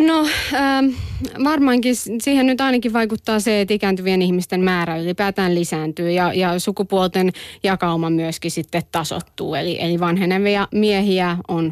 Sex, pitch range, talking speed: female, 175-205 Hz, 130 wpm